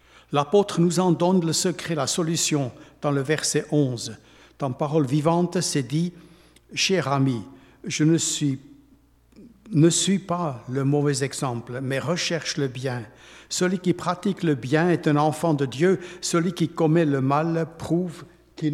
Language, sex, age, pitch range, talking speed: French, male, 60-79, 135-175 Hz, 155 wpm